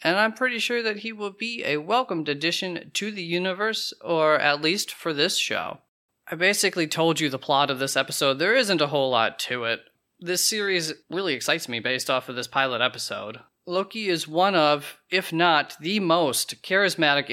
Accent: American